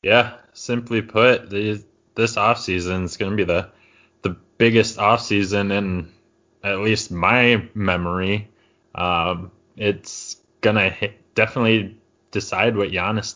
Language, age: English, 20-39